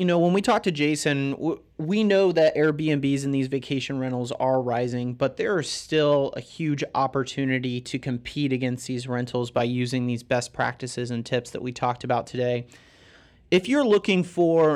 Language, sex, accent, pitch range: English, male, American, 130-165 Hz